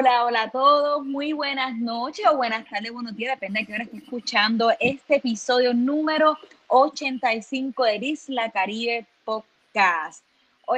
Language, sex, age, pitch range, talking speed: English, female, 20-39, 225-280 Hz, 150 wpm